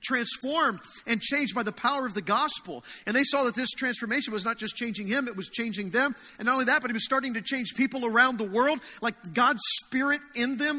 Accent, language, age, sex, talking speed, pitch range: American, English, 40-59, male, 240 wpm, 225-275 Hz